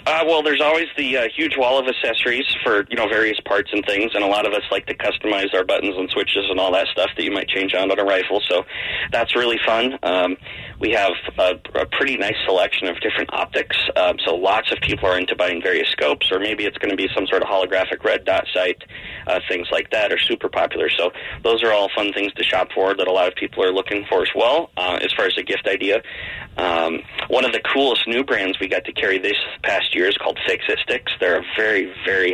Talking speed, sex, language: 245 wpm, male, English